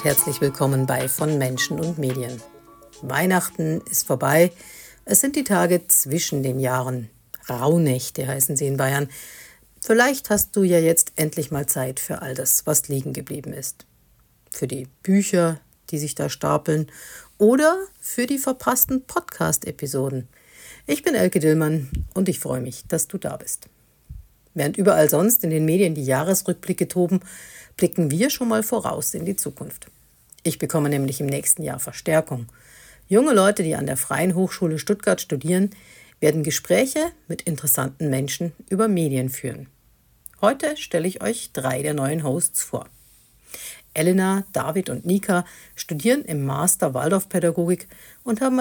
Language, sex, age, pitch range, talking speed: German, female, 60-79, 135-190 Hz, 150 wpm